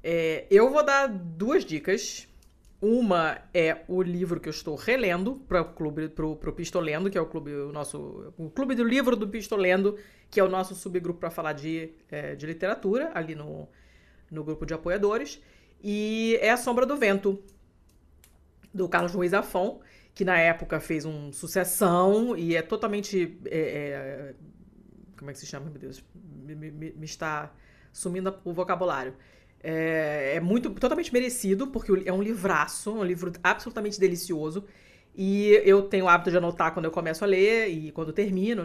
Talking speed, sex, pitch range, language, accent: 175 wpm, female, 155-200 Hz, Portuguese, Brazilian